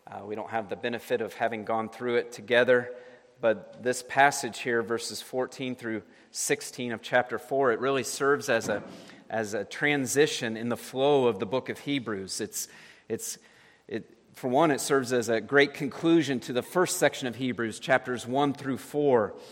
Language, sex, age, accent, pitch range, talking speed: English, male, 40-59, American, 110-130 Hz, 185 wpm